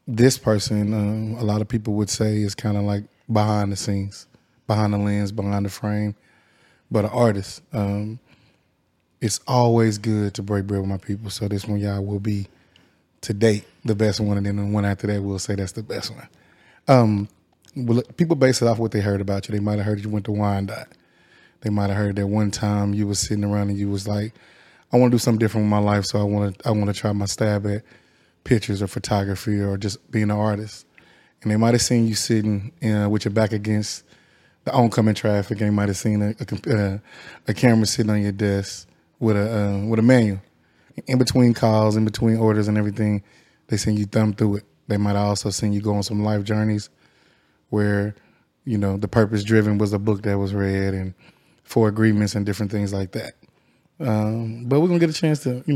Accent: American